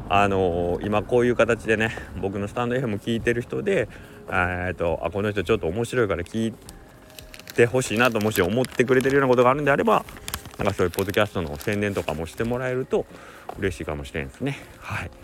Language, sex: Japanese, male